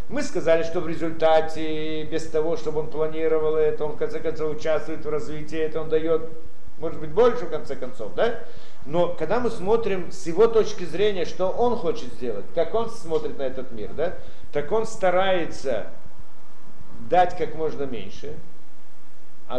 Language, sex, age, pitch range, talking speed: Russian, male, 50-69, 155-210 Hz, 170 wpm